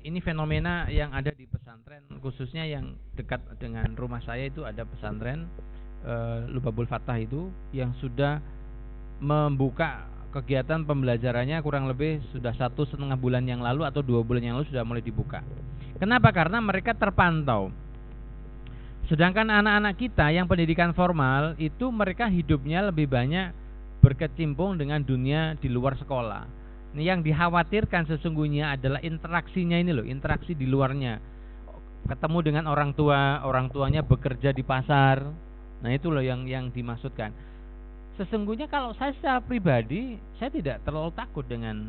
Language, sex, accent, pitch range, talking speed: Indonesian, male, native, 120-160 Hz, 140 wpm